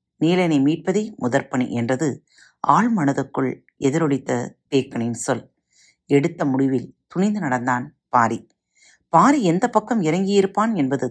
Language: Tamil